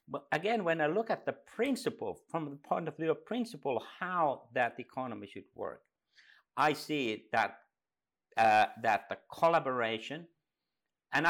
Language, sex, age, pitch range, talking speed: English, male, 50-69, 115-155 Hz, 150 wpm